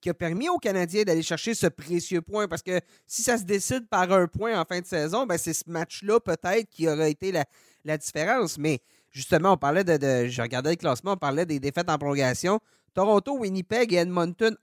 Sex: male